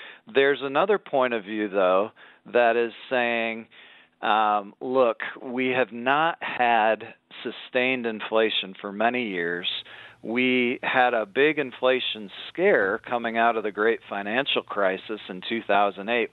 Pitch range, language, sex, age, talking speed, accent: 105-130 Hz, English, male, 40-59, 130 wpm, American